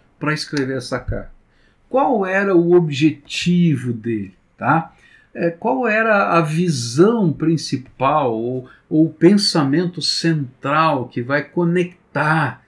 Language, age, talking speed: Portuguese, 50-69, 115 wpm